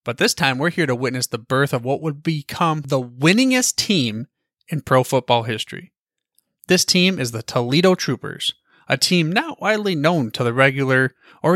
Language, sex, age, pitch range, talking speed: English, male, 30-49, 130-190 Hz, 180 wpm